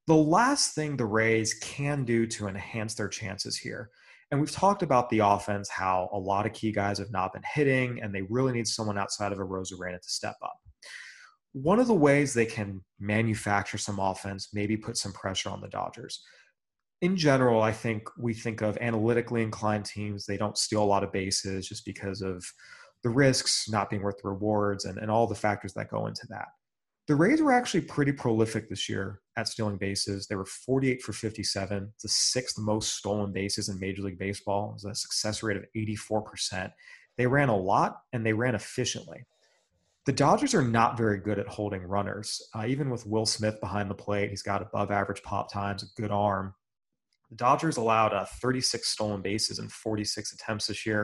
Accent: American